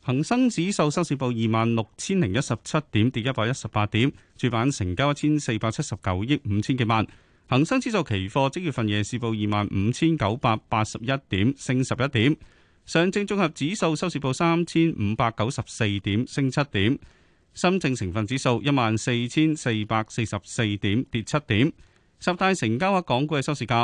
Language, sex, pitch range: Chinese, male, 110-145 Hz